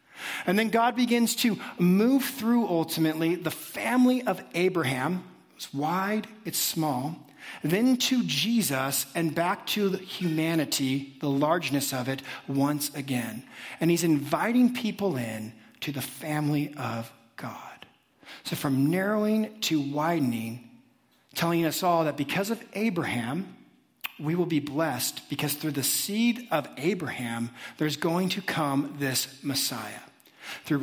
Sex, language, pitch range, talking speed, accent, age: male, English, 140-185 Hz, 130 wpm, American, 50-69